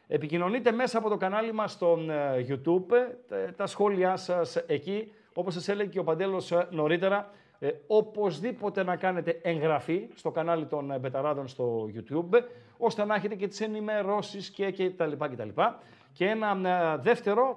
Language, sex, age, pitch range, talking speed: Greek, male, 50-69, 160-215 Hz, 155 wpm